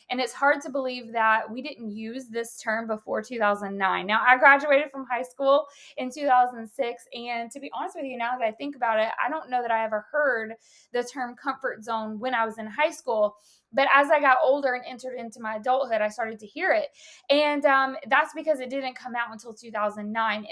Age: 20-39